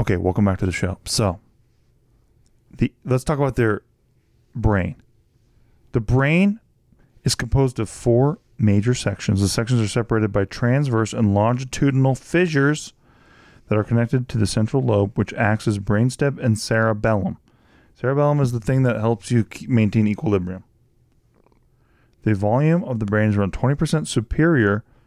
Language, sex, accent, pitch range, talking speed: English, male, American, 110-135 Hz, 150 wpm